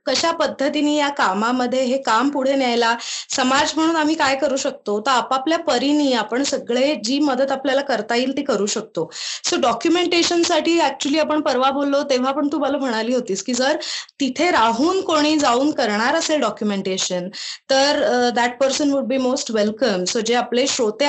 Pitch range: 230-290 Hz